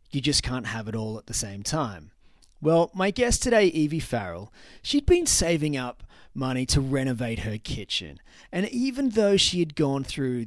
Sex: male